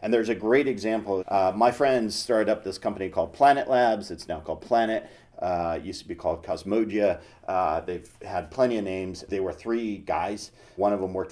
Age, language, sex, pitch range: 40-59, English, male, 105-140 Hz